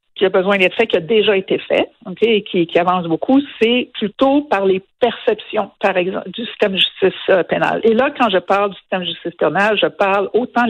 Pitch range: 185-230 Hz